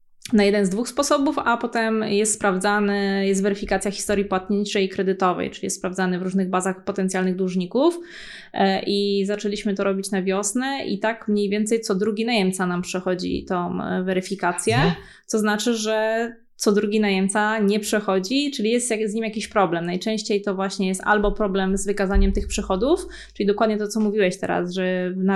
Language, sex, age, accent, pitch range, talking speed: Polish, female, 20-39, native, 190-210 Hz, 170 wpm